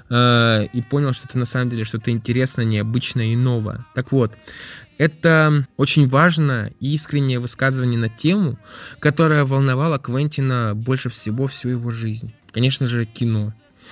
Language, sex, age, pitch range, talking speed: Russian, male, 20-39, 120-145 Hz, 140 wpm